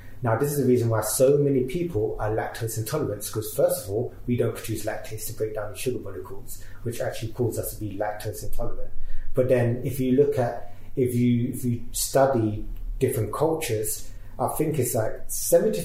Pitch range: 105-125 Hz